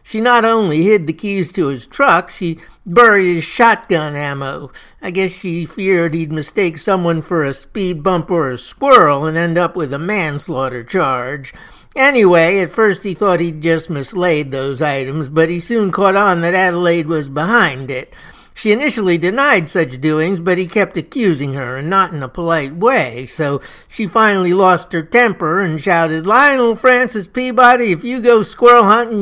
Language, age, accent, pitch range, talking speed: English, 60-79, American, 155-205 Hz, 180 wpm